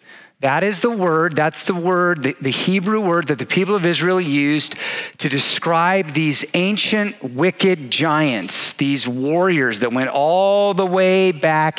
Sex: male